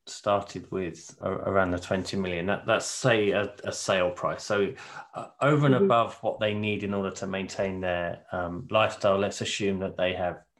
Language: English